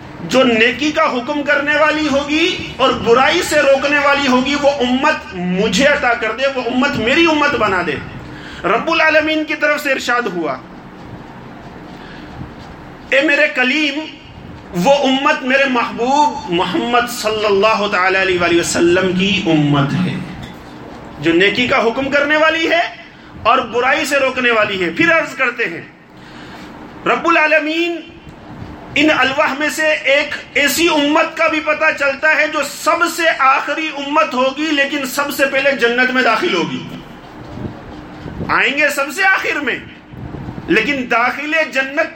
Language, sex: English, male